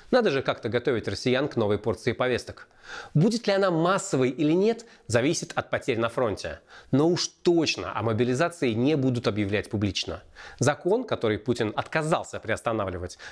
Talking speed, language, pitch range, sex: 155 wpm, Russian, 110-150 Hz, male